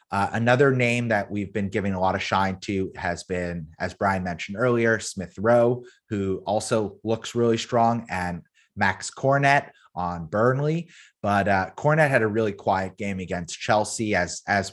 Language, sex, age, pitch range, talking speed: English, male, 30-49, 95-120 Hz, 170 wpm